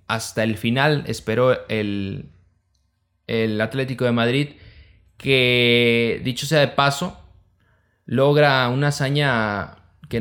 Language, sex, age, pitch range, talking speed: Spanish, male, 20-39, 95-125 Hz, 105 wpm